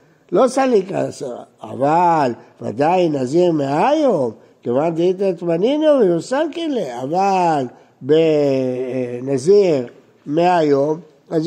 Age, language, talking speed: 60-79, Hebrew, 80 wpm